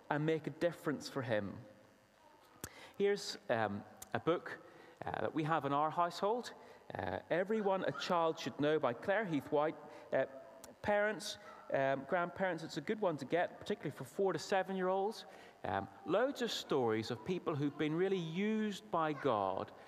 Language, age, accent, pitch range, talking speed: English, 30-49, British, 135-200 Hz, 155 wpm